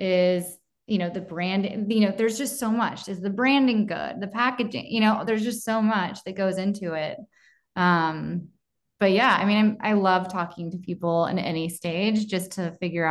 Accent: American